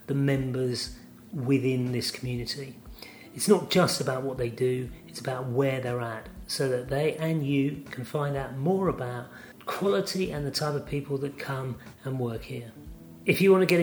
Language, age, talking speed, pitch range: English, 40-59, 185 wpm, 120-155 Hz